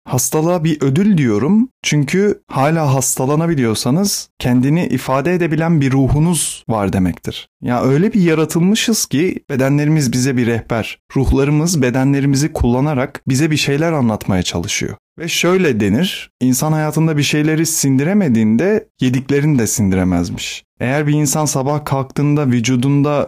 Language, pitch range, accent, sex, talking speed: Turkish, 115-150 Hz, native, male, 125 wpm